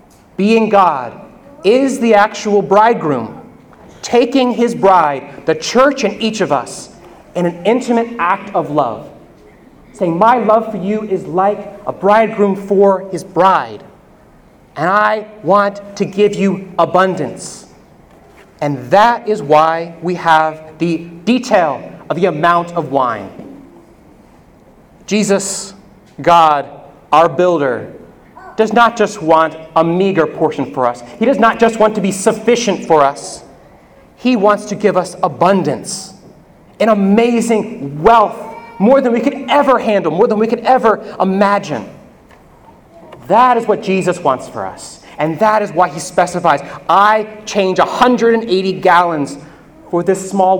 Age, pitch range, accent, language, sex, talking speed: 30-49, 165-215 Hz, American, English, male, 140 wpm